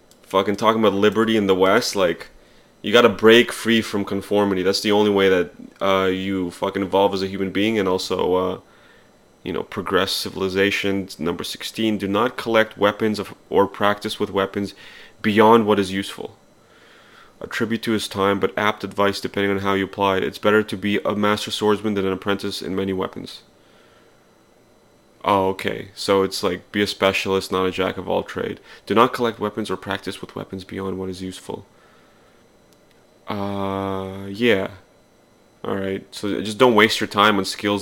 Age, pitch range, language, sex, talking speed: 30-49, 95-115 Hz, English, male, 175 wpm